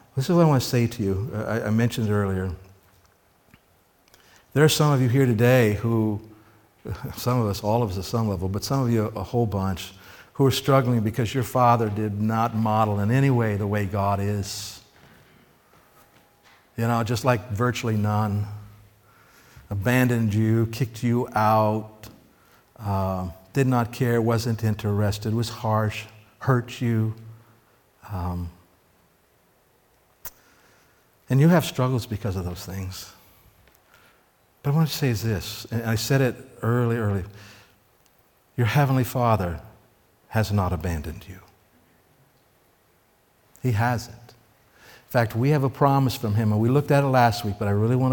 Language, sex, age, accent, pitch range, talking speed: English, male, 50-69, American, 100-125 Hz, 155 wpm